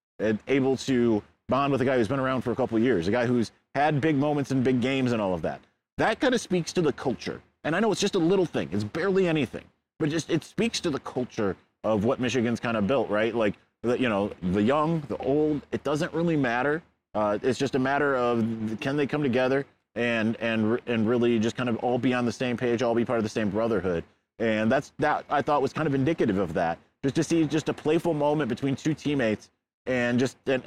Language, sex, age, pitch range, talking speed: English, male, 30-49, 115-150 Hz, 250 wpm